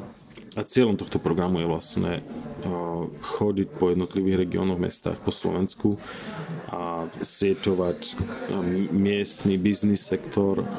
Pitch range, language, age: 95-120 Hz, Slovak, 30-49